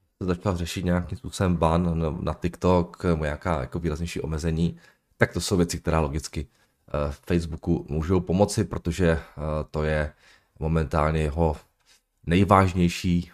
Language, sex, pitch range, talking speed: Czech, male, 80-100 Hz, 130 wpm